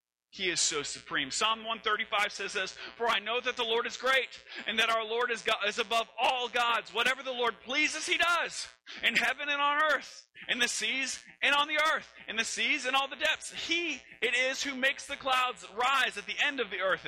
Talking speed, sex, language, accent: 230 wpm, male, English, American